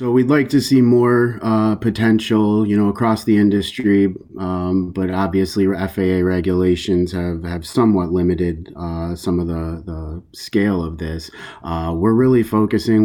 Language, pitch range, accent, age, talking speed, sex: English, 80-90 Hz, American, 30-49, 155 wpm, male